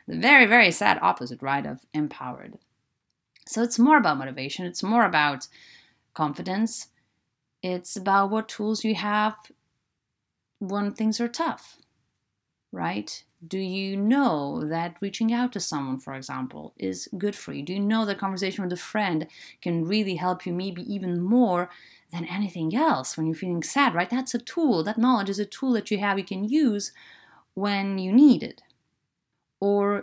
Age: 30-49